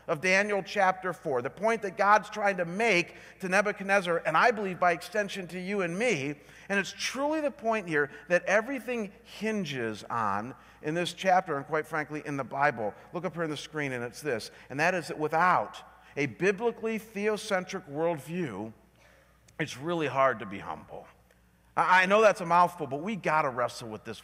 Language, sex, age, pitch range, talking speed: English, male, 40-59, 160-220 Hz, 190 wpm